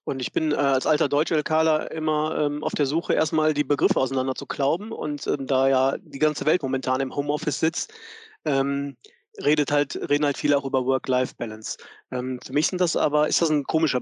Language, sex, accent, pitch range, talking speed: German, male, German, 135-155 Hz, 195 wpm